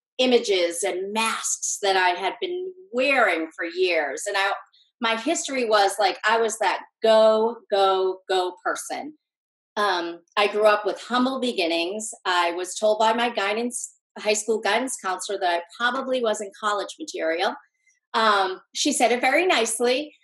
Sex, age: female, 40-59